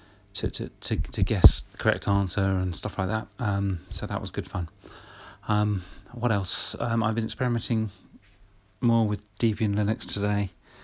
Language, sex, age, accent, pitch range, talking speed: English, male, 30-49, British, 95-105 Hz, 165 wpm